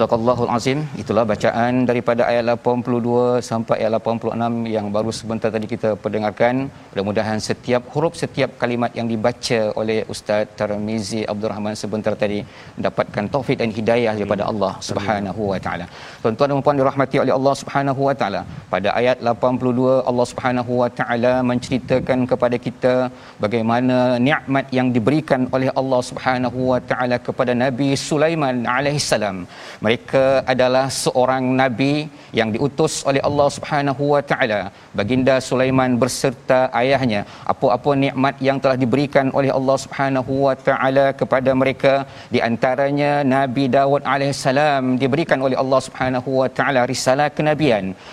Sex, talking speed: male, 140 wpm